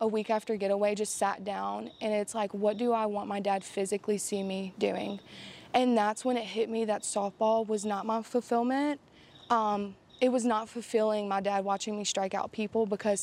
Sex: female